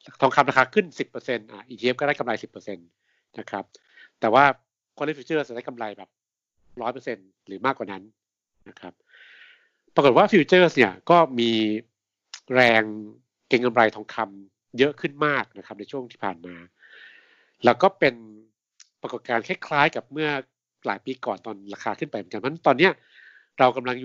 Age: 60-79